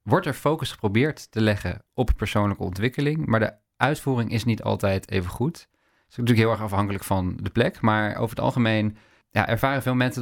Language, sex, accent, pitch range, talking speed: Dutch, male, Dutch, 105-120 Hz, 200 wpm